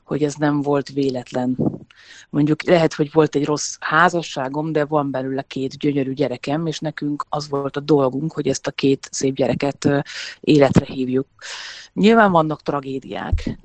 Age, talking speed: 30-49, 155 wpm